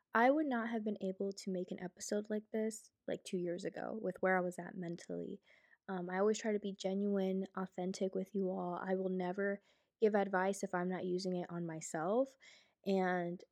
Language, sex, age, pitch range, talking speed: English, female, 20-39, 185-225 Hz, 205 wpm